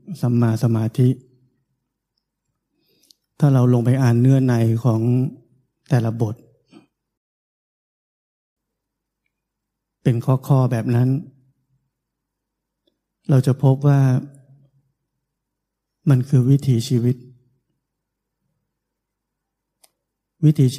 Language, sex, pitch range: Thai, male, 120-135 Hz